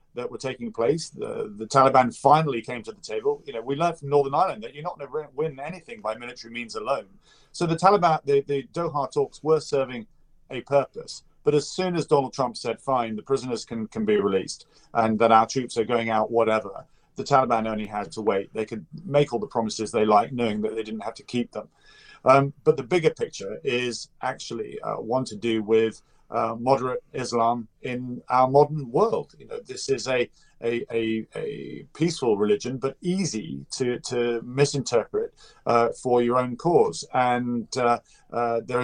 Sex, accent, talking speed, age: male, British, 200 wpm, 40-59